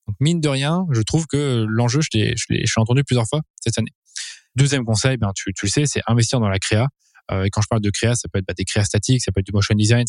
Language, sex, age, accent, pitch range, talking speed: French, male, 20-39, French, 110-135 Hz, 305 wpm